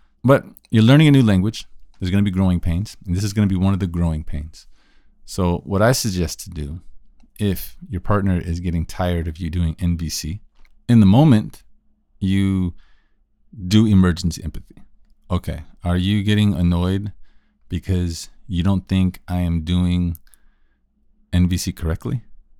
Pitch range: 85-105 Hz